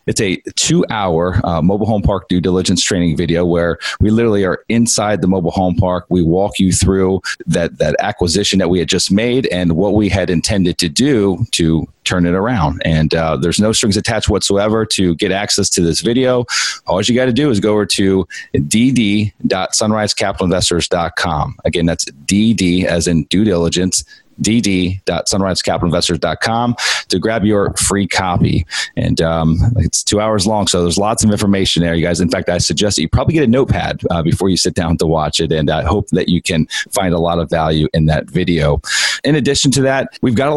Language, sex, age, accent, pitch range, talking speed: English, male, 30-49, American, 85-105 Hz, 195 wpm